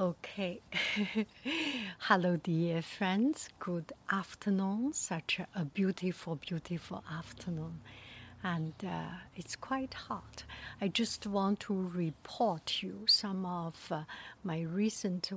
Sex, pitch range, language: female, 180-225 Hz, English